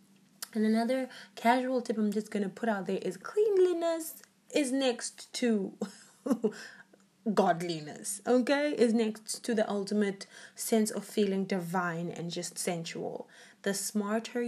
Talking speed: 135 wpm